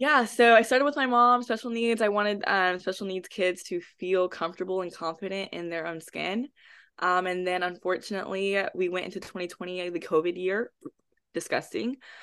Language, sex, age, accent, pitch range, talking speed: English, female, 20-39, American, 160-190 Hz, 175 wpm